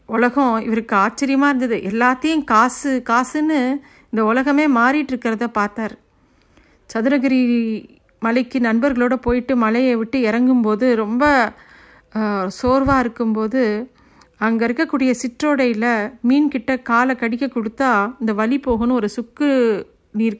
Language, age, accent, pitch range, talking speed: Tamil, 50-69, native, 220-265 Hz, 105 wpm